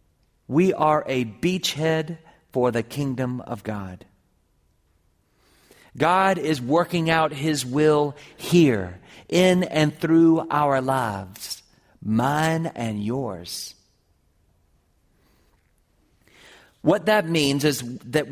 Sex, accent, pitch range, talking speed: male, American, 115-160 Hz, 95 wpm